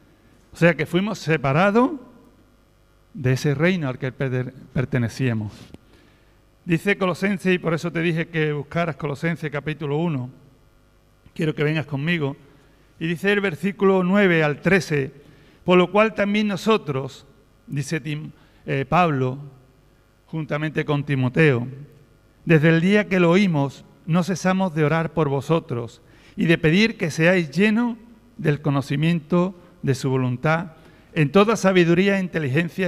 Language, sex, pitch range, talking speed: Spanish, male, 140-190 Hz, 135 wpm